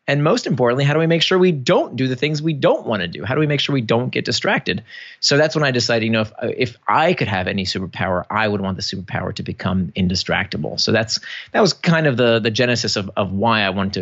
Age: 30-49